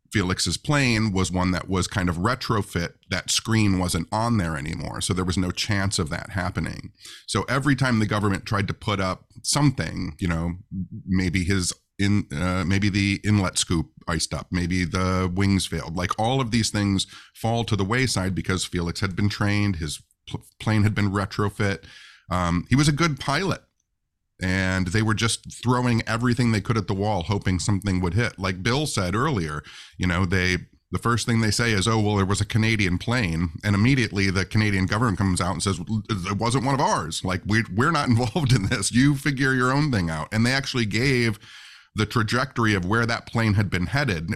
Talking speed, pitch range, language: 200 wpm, 95-115 Hz, English